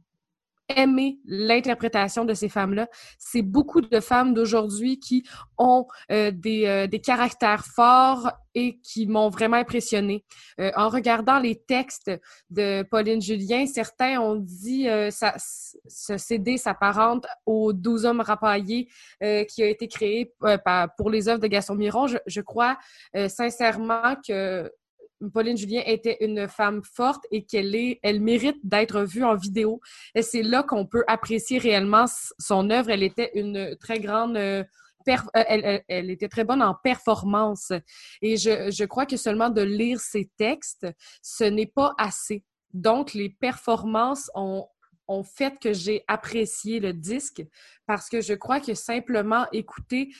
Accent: Canadian